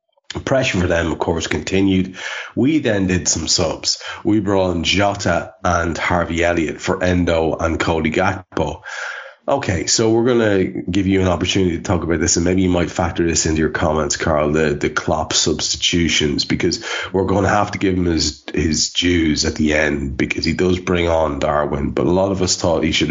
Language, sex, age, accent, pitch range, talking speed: English, male, 30-49, Irish, 85-95 Hz, 205 wpm